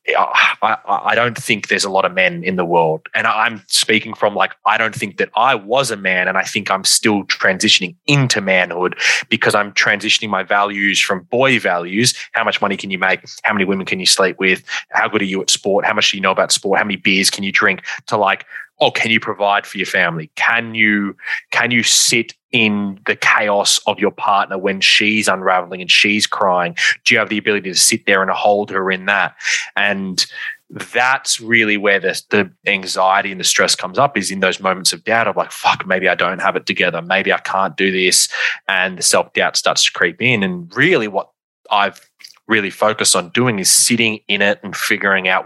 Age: 20-39